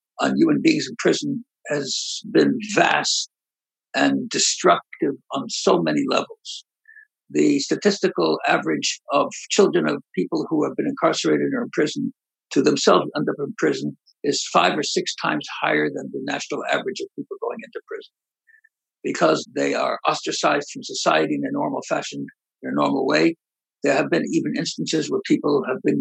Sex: male